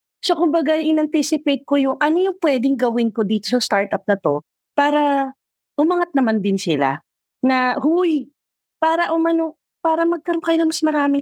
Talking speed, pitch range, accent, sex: 155 wpm, 210-315 Hz, Filipino, female